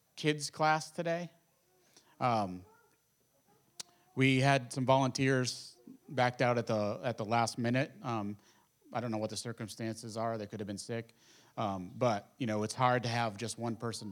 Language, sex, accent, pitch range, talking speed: English, male, American, 115-155 Hz, 170 wpm